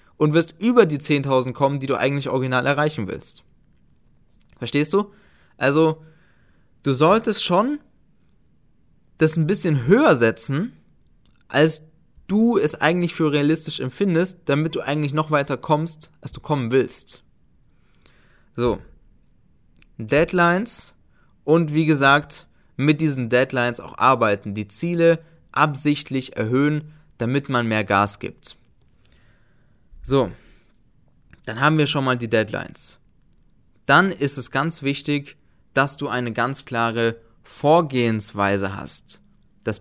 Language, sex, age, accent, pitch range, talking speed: German, male, 20-39, German, 120-160 Hz, 120 wpm